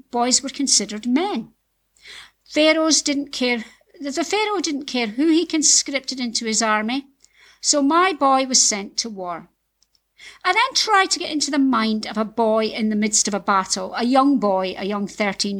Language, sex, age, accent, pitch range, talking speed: English, female, 50-69, British, 215-285 Hz, 180 wpm